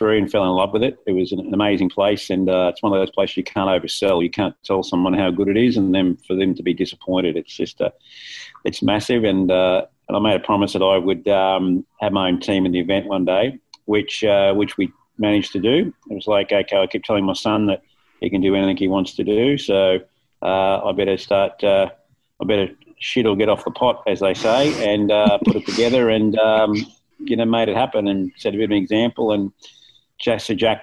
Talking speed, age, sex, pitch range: 245 wpm, 40-59, male, 95-110 Hz